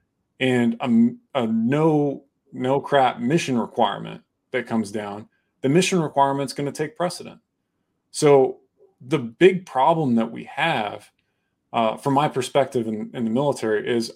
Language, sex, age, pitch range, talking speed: English, male, 30-49, 115-140 Hz, 145 wpm